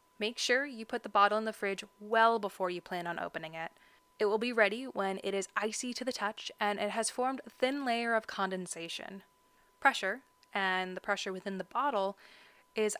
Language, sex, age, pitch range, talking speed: English, female, 20-39, 190-230 Hz, 205 wpm